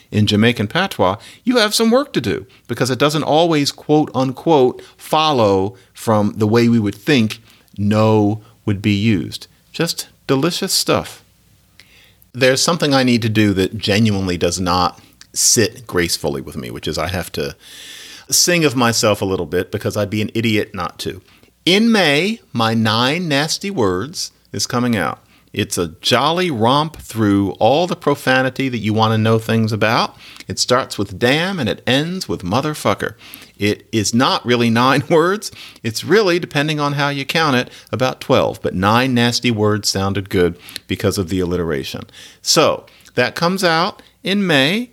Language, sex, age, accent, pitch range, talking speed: English, male, 50-69, American, 105-140 Hz, 170 wpm